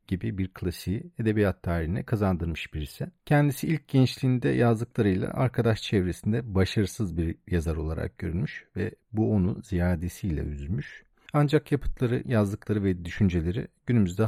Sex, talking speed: male, 120 wpm